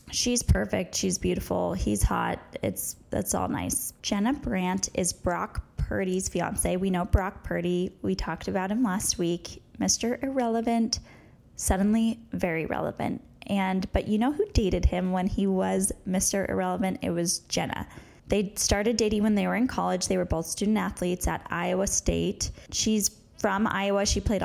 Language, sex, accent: English, female, American